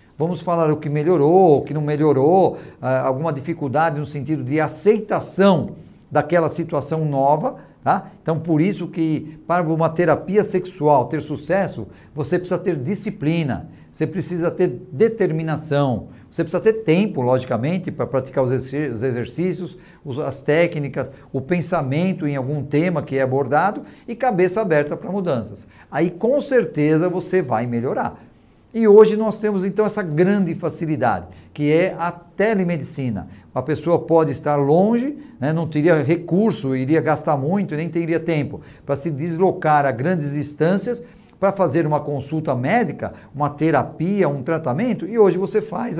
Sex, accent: male, Brazilian